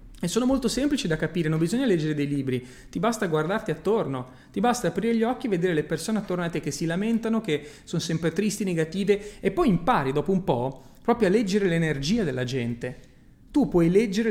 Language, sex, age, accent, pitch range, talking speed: Italian, male, 30-49, native, 140-200 Hz, 210 wpm